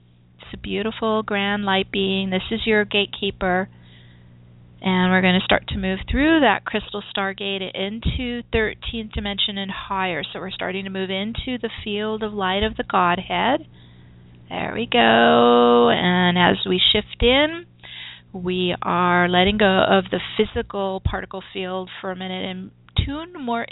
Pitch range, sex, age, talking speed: 175-205 Hz, female, 30-49, 155 wpm